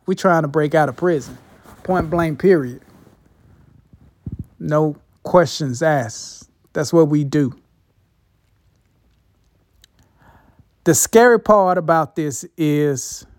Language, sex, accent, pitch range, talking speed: English, male, American, 140-185 Hz, 105 wpm